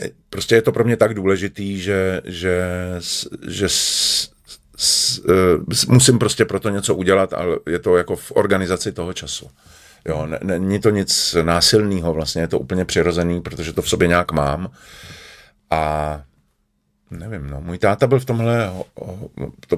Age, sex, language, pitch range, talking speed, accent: 40-59, male, Czech, 80-95 Hz, 145 wpm, native